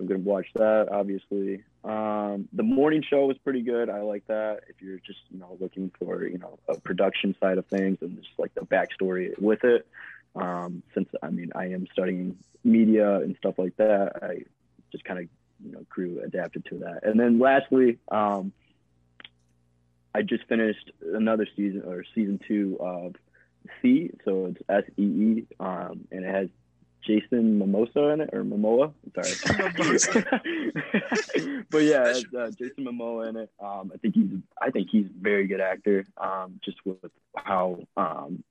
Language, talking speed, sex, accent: English, 170 wpm, male, American